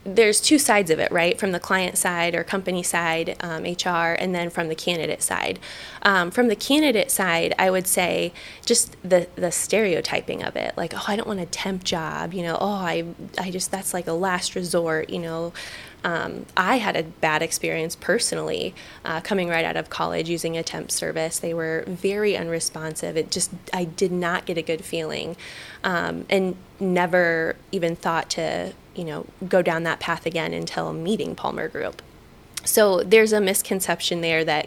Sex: female